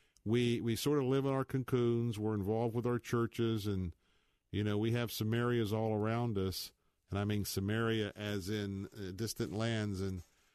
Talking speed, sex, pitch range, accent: 175 wpm, male, 95-115 Hz, American